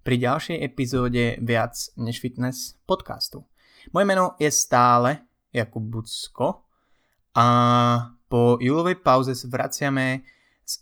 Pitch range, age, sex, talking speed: 115-135 Hz, 20-39, male, 105 wpm